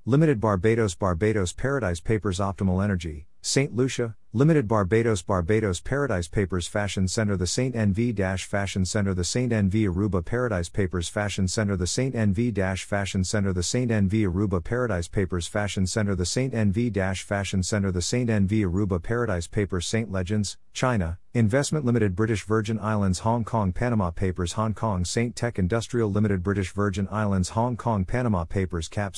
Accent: American